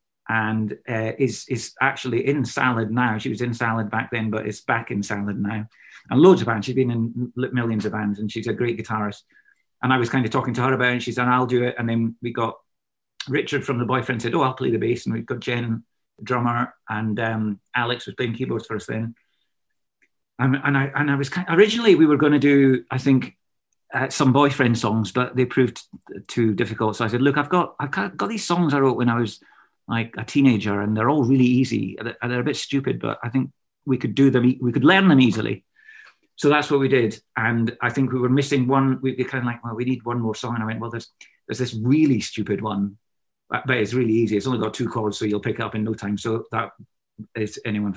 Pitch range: 110-130 Hz